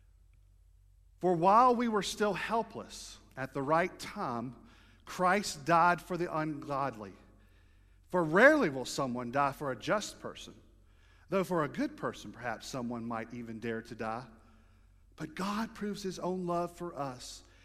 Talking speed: 150 wpm